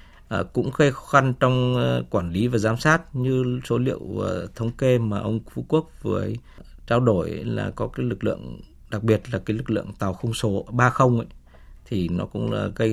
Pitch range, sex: 95-125 Hz, male